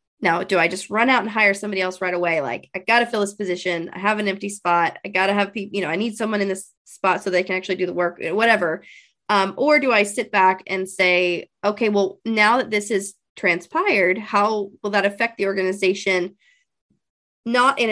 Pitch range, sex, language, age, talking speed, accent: 185-225 Hz, female, English, 20-39, 230 wpm, American